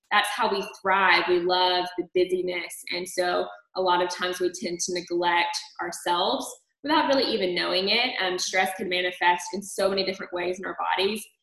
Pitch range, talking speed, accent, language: 180-205 Hz, 190 wpm, American, English